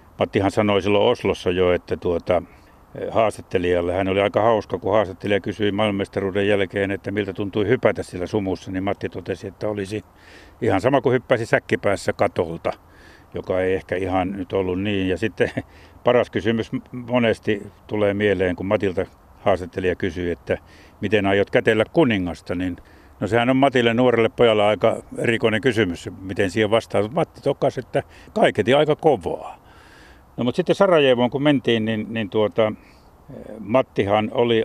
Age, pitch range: 60-79, 95-115 Hz